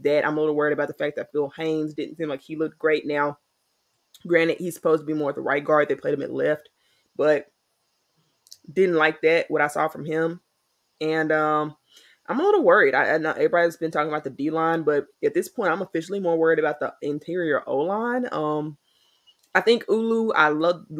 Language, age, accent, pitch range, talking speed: English, 20-39, American, 150-175 Hz, 210 wpm